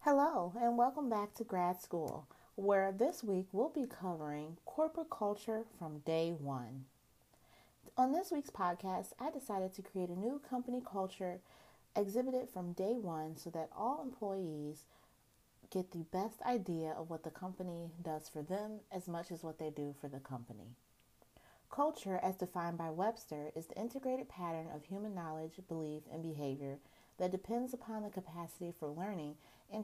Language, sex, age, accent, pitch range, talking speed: English, female, 40-59, American, 155-220 Hz, 165 wpm